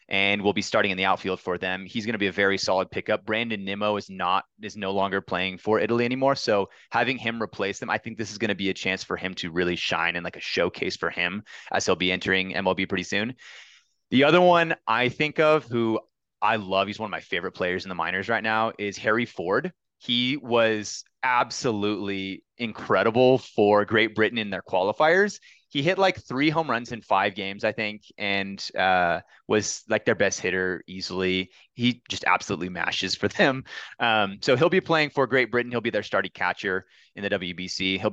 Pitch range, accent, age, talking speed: 95-120 Hz, American, 30-49, 210 wpm